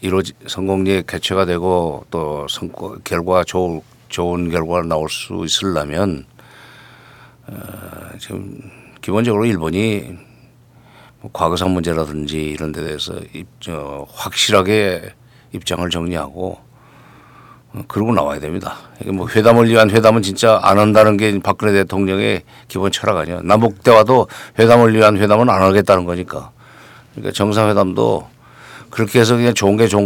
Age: 50-69